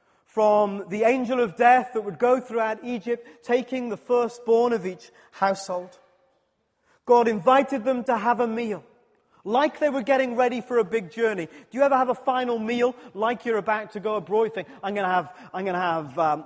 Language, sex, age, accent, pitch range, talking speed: English, male, 30-49, British, 205-255 Hz, 195 wpm